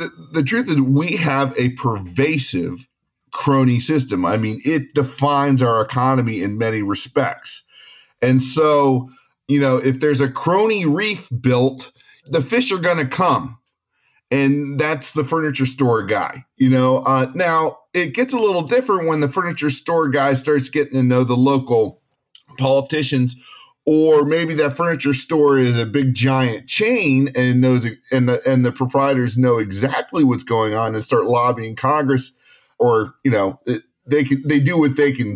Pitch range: 125-150 Hz